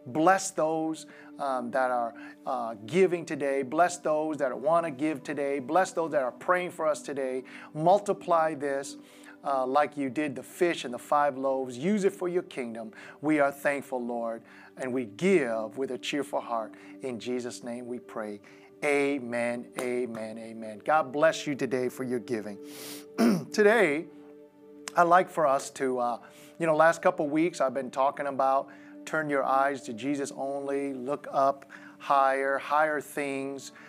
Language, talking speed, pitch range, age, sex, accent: English, 165 wpm, 130-155 Hz, 40-59, male, American